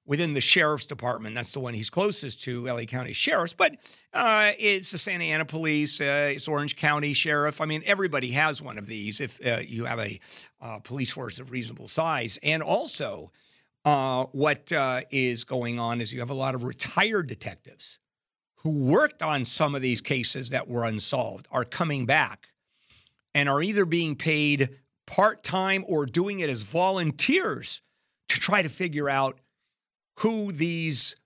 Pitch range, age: 125-160 Hz, 50-69